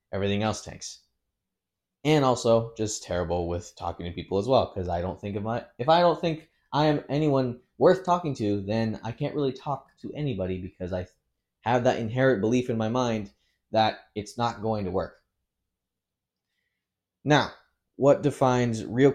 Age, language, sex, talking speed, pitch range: 20-39, English, male, 170 wpm, 105-150 Hz